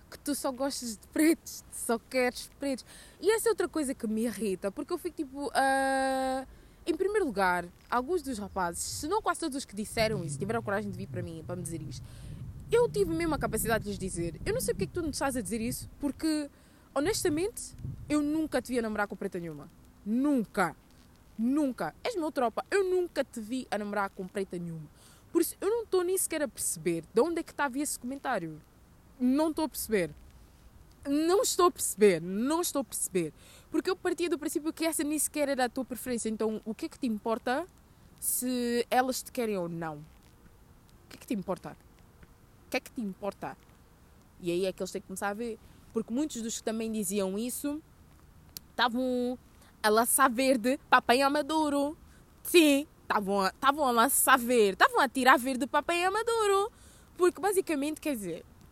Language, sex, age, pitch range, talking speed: Portuguese, female, 20-39, 210-310 Hz, 200 wpm